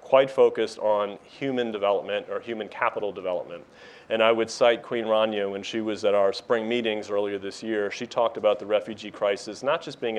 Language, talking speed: English, 200 wpm